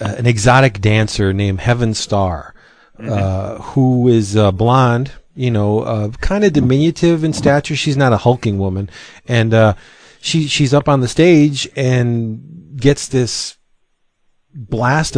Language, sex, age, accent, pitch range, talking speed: English, male, 40-59, American, 110-140 Hz, 140 wpm